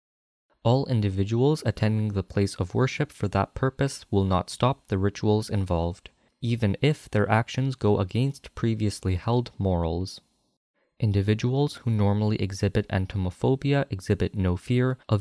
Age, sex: 20-39, male